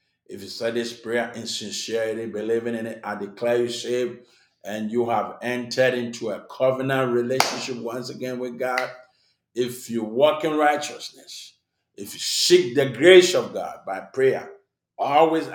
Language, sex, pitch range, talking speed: English, male, 120-145 Hz, 160 wpm